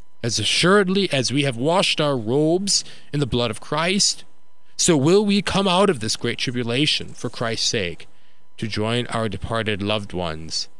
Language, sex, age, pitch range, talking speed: English, male, 30-49, 105-140 Hz, 170 wpm